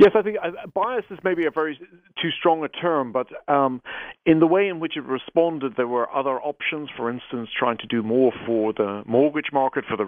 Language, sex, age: English, male, 50-69